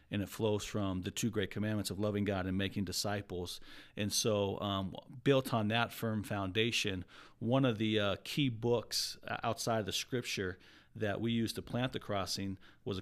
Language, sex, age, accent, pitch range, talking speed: English, male, 40-59, American, 100-115 Hz, 185 wpm